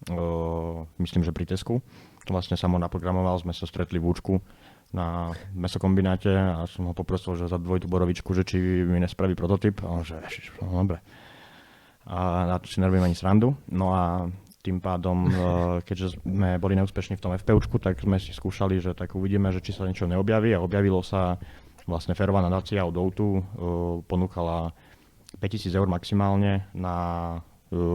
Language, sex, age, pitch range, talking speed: Slovak, male, 20-39, 85-95 Hz, 170 wpm